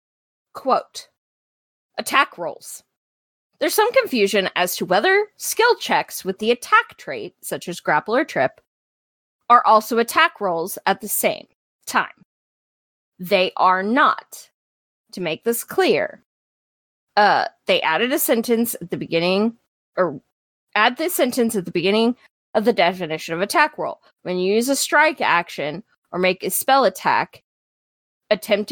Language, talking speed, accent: English, 140 wpm, American